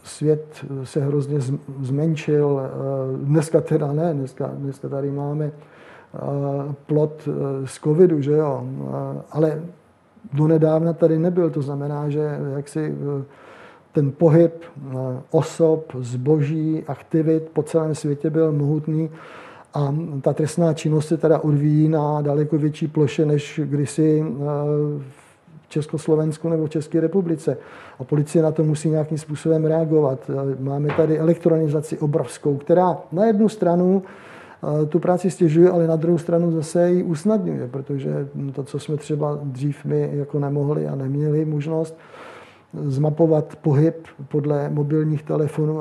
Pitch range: 145-160 Hz